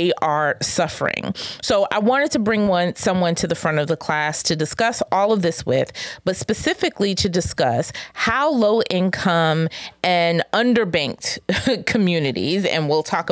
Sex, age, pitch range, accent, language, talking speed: female, 30-49, 165-210 Hz, American, English, 155 wpm